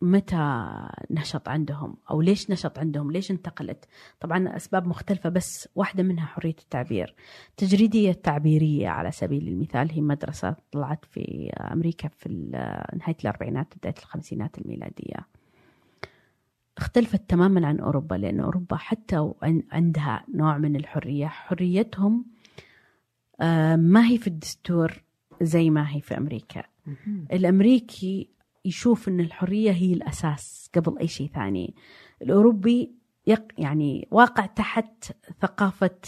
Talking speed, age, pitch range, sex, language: 115 wpm, 30-49, 155-200 Hz, female, Arabic